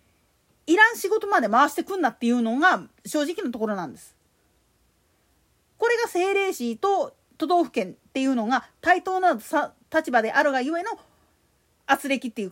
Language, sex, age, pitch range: Japanese, female, 40-59, 250-375 Hz